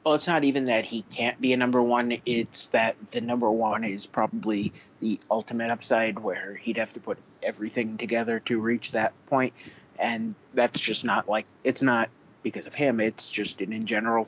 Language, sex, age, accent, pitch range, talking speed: English, male, 30-49, American, 110-130 Hz, 195 wpm